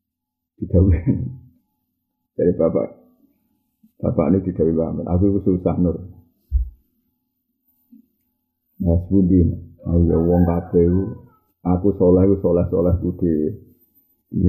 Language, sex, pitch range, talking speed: Malay, male, 90-115 Hz, 90 wpm